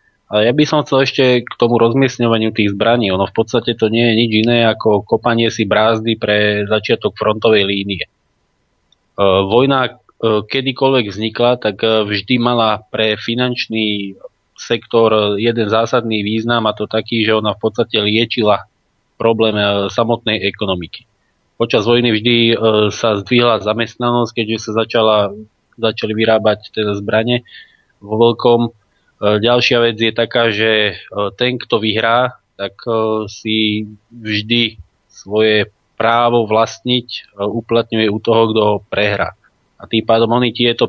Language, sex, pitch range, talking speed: Slovak, male, 105-120 Hz, 130 wpm